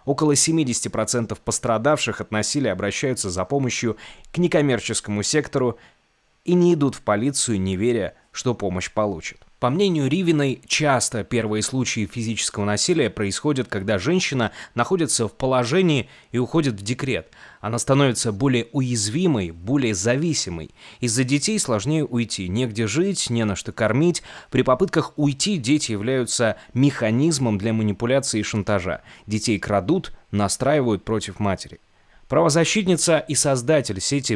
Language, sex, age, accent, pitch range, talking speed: Russian, male, 20-39, native, 105-145 Hz, 130 wpm